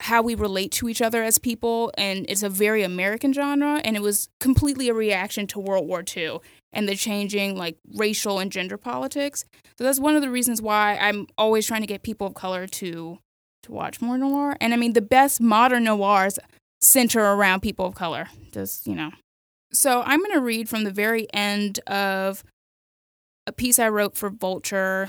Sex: female